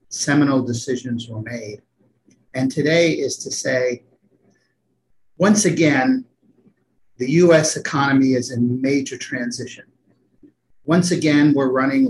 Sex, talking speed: male, 110 wpm